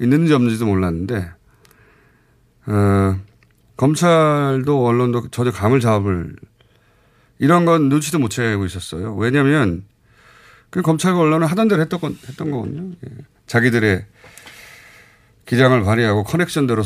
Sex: male